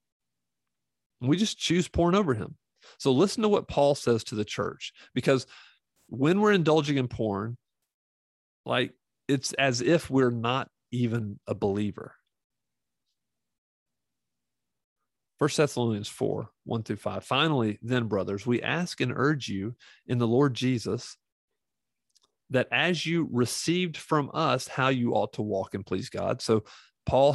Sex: male